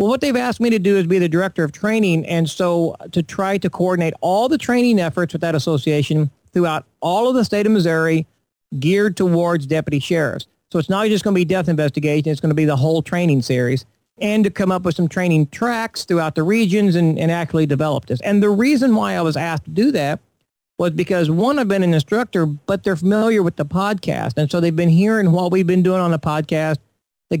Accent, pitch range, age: American, 160-205 Hz, 50-69